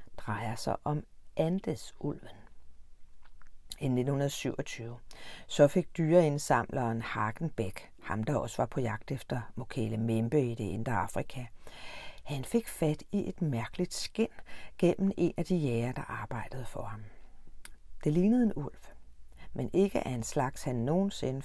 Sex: female